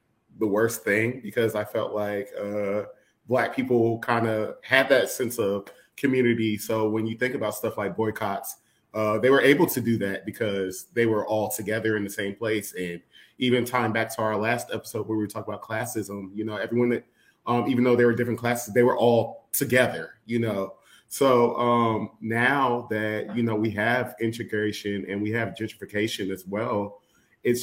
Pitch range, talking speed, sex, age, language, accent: 105-120 Hz, 190 wpm, male, 30-49, English, American